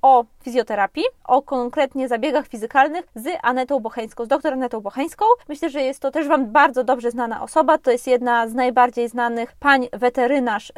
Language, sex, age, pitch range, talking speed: Polish, female, 20-39, 240-290 Hz, 175 wpm